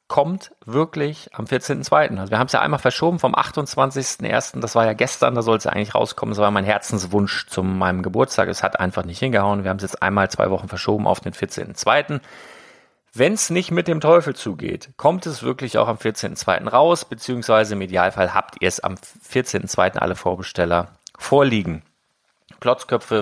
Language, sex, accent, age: German, male, German, 30-49